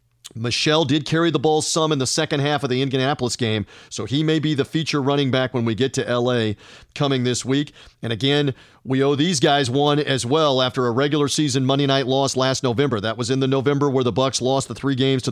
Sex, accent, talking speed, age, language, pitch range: male, American, 240 wpm, 40-59, English, 125-160 Hz